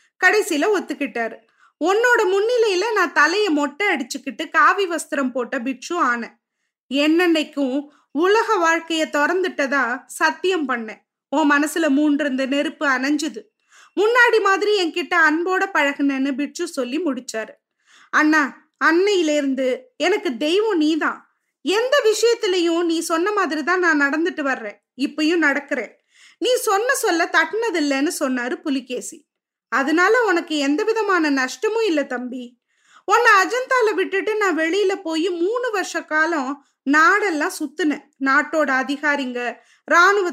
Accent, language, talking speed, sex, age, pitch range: native, Tamil, 115 wpm, female, 20-39, 280-365 Hz